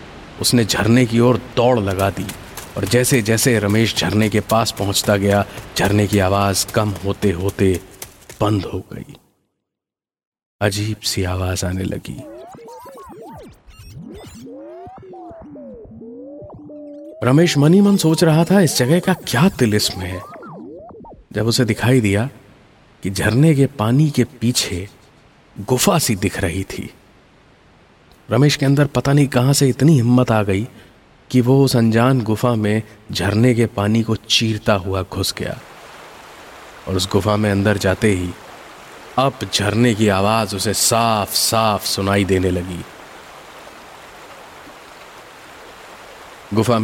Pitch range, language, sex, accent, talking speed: 100-130 Hz, Hindi, male, native, 125 wpm